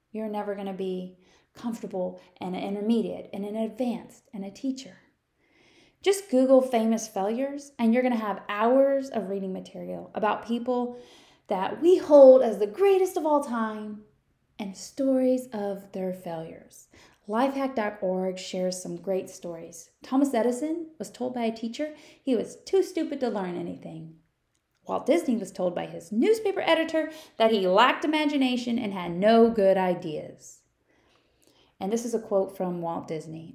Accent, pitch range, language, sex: American, 190-265 Hz, English, female